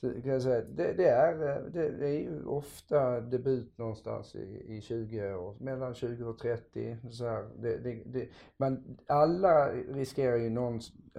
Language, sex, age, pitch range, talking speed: English, male, 50-69, 100-130 Hz, 145 wpm